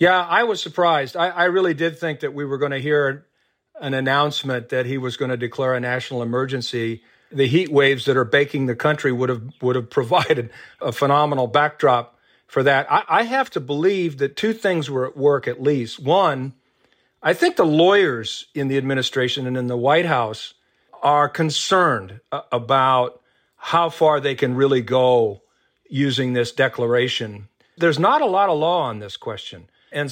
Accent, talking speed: American, 185 wpm